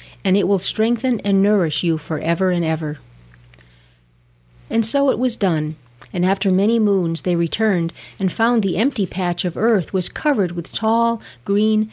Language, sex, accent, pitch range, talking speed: English, female, American, 160-215 Hz, 165 wpm